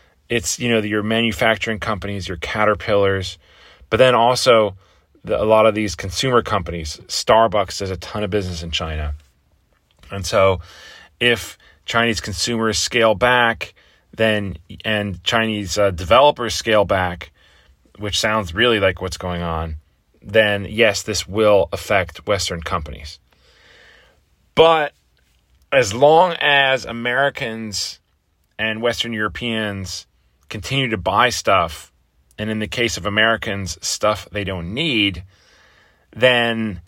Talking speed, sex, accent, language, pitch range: 125 wpm, male, American, English, 90-115 Hz